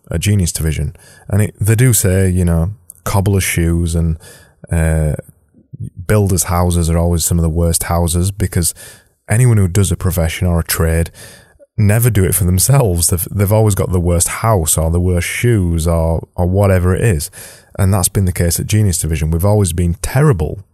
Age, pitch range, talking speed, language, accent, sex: 20-39, 85-110 Hz, 190 wpm, English, British, male